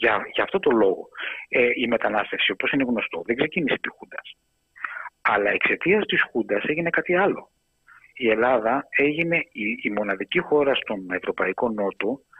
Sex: male